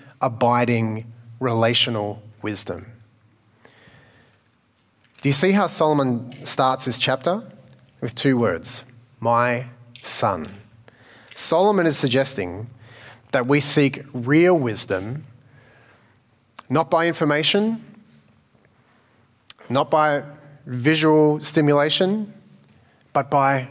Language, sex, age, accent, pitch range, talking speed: English, male, 30-49, Australian, 120-155 Hz, 85 wpm